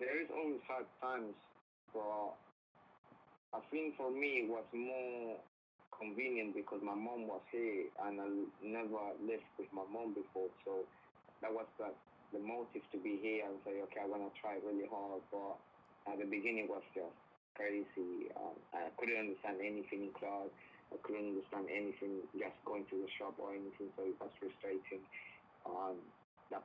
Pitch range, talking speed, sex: 100-120 Hz, 175 wpm, male